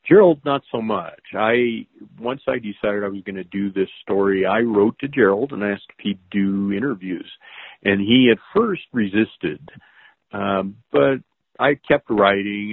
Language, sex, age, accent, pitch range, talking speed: English, male, 50-69, American, 95-130 Hz, 165 wpm